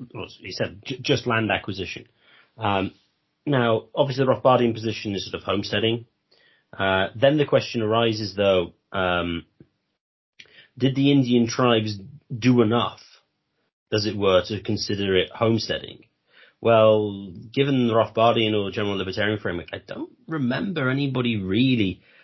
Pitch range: 100-130 Hz